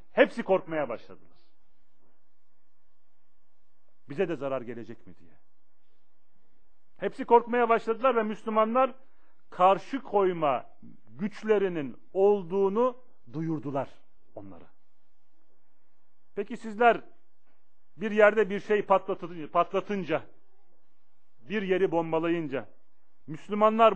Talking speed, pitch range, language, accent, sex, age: 80 wpm, 155-215 Hz, Turkish, native, male, 40-59